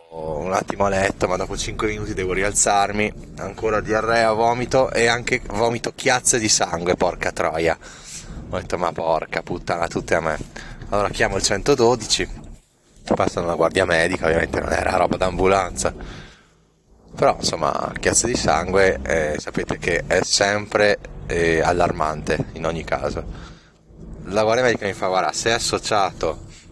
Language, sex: Italian, male